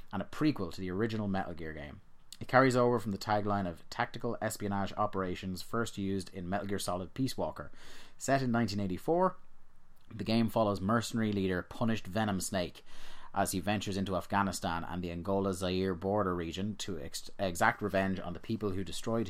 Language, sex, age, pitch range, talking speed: English, male, 30-49, 90-110 Hz, 175 wpm